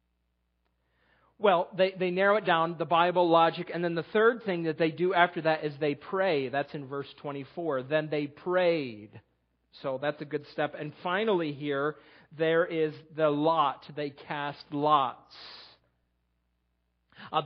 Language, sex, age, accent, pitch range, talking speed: English, male, 40-59, American, 150-195 Hz, 155 wpm